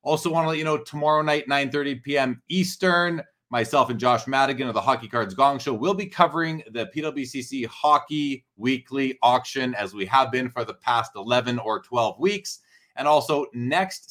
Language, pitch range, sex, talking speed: English, 125-160 Hz, male, 185 wpm